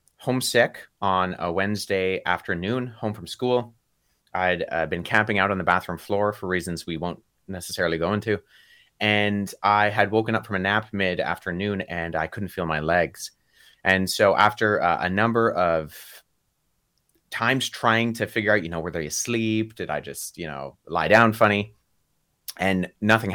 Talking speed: 170 wpm